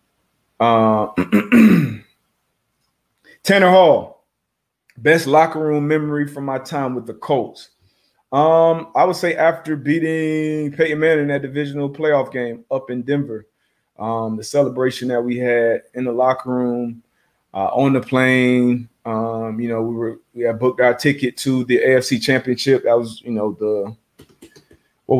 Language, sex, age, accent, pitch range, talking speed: English, male, 30-49, American, 115-140 Hz, 150 wpm